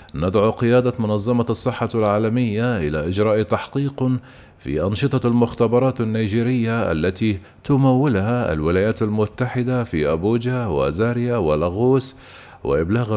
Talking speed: 95 wpm